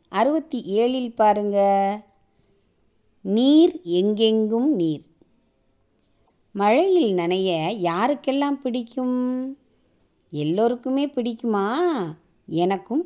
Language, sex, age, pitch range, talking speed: Tamil, female, 20-39, 205-265 Hz, 60 wpm